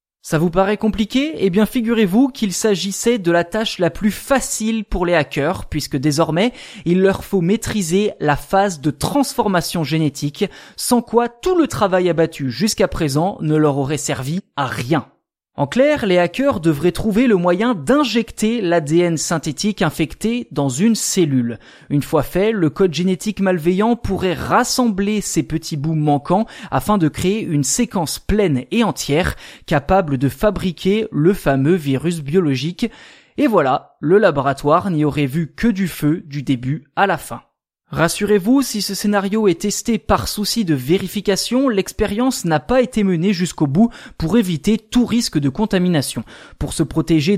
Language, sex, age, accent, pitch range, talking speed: French, male, 20-39, French, 155-215 Hz, 160 wpm